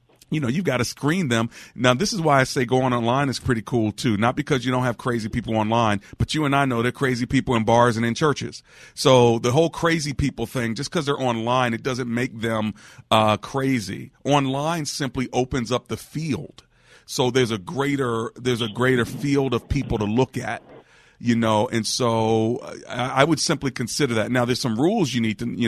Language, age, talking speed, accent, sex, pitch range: English, 40-59, 215 wpm, American, male, 110-130 Hz